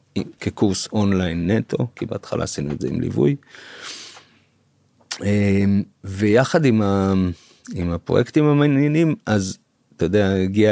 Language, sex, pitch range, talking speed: Hebrew, male, 95-115 Hz, 110 wpm